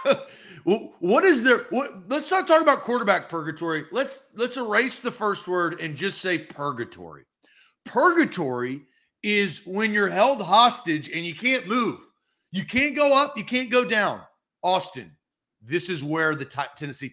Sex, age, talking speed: male, 40-59, 160 wpm